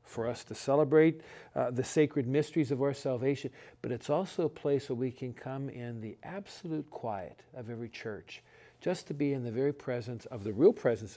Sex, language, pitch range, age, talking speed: male, English, 120-140 Hz, 50-69, 205 wpm